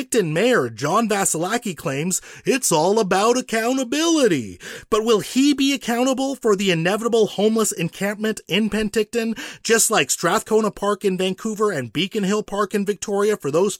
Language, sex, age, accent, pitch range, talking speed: English, male, 30-49, American, 180-230 Hz, 150 wpm